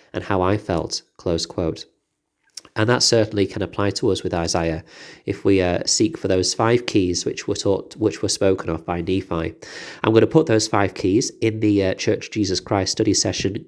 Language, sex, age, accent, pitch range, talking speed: English, male, 30-49, British, 95-110 Hz, 205 wpm